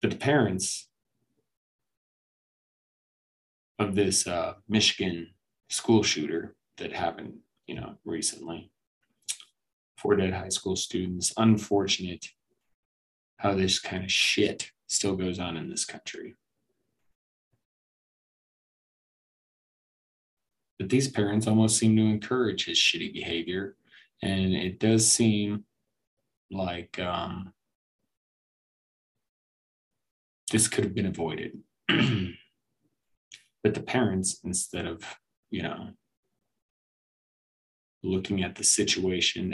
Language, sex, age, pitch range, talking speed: English, male, 20-39, 90-105 Hz, 95 wpm